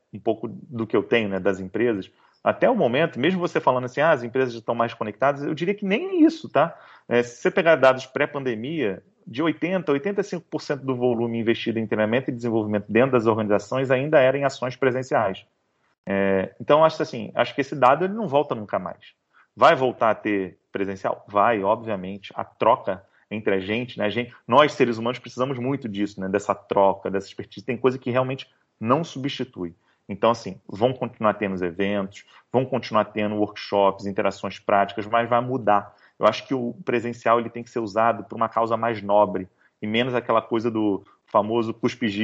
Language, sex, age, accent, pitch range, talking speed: Portuguese, male, 40-59, Brazilian, 105-135 Hz, 190 wpm